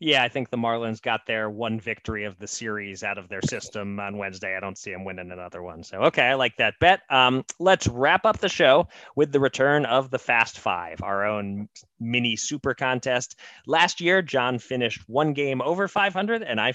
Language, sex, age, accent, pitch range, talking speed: English, male, 20-39, American, 115-150 Hz, 210 wpm